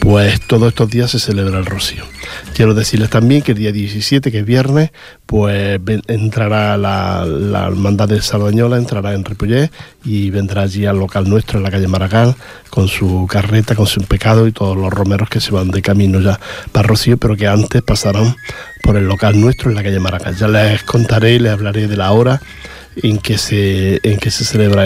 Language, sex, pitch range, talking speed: Portuguese, male, 95-110 Hz, 195 wpm